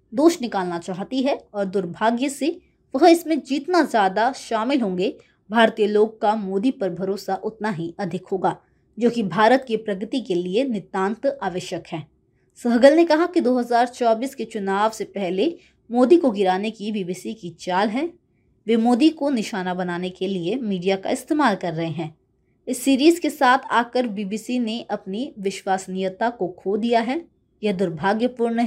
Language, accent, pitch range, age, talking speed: Hindi, native, 190-250 Hz, 20-39, 165 wpm